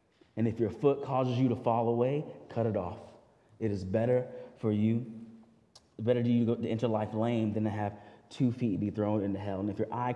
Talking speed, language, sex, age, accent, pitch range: 215 wpm, English, male, 20-39, American, 105-130 Hz